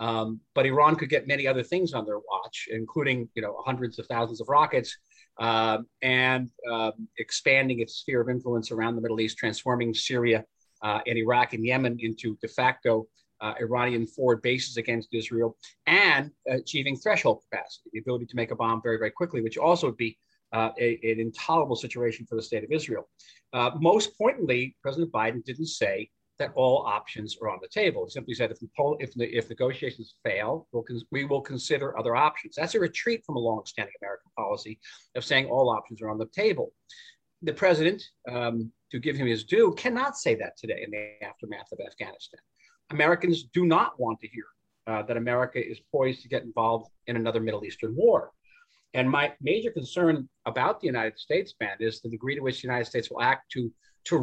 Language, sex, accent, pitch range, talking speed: English, male, American, 115-145 Hz, 195 wpm